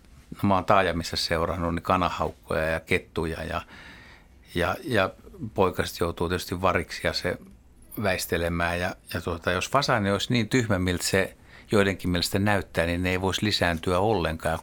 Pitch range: 85-100 Hz